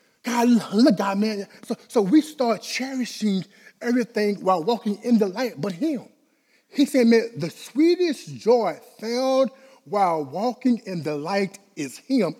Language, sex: English, male